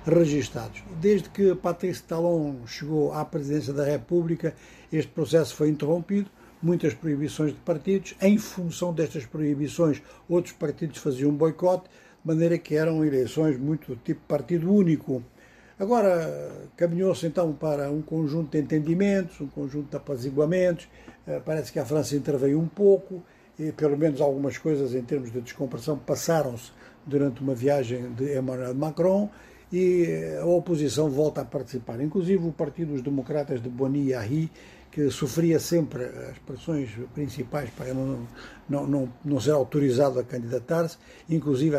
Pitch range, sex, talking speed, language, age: 140-170 Hz, male, 150 wpm, Portuguese, 60-79